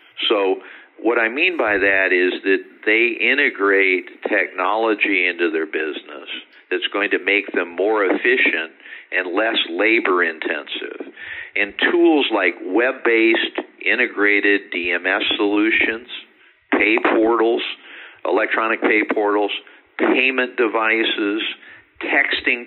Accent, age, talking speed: American, 50-69, 105 wpm